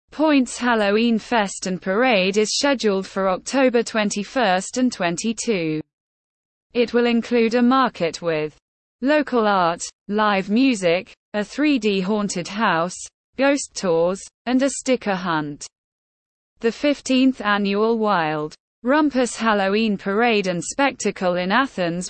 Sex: female